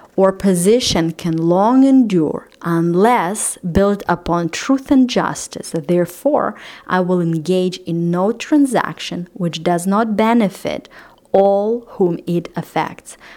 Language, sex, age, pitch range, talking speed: English, female, 30-49, 170-205 Hz, 115 wpm